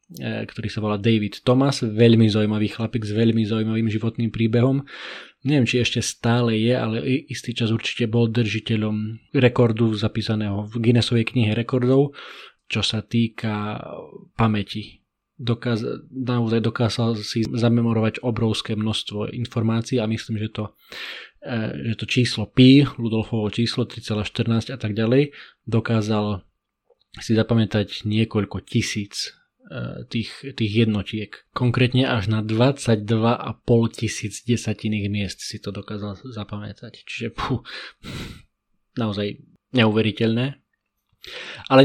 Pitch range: 110-120 Hz